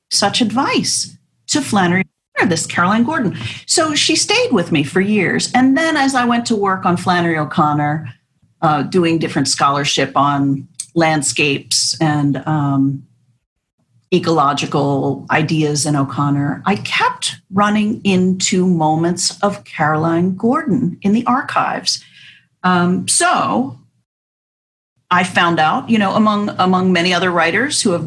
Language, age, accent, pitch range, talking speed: English, 40-59, American, 150-210 Hz, 130 wpm